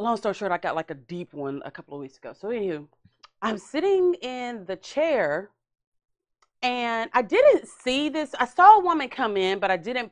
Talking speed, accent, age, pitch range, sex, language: 210 wpm, American, 30-49, 185-265 Hz, female, English